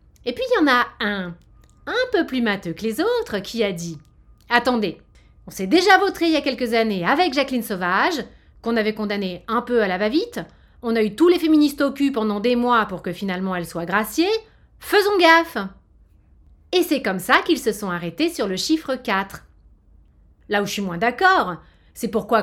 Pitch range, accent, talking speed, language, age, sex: 195-290 Hz, French, 205 wpm, French, 30-49, female